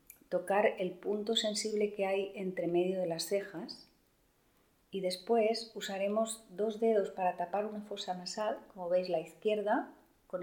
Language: Spanish